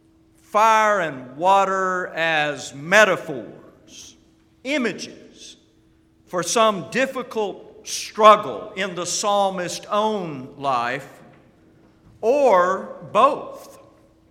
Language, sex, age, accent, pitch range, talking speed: English, male, 50-69, American, 145-220 Hz, 70 wpm